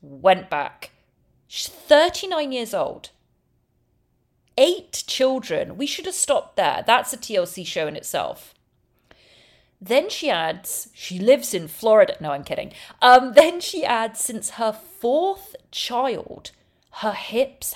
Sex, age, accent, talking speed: female, 30-49, British, 130 wpm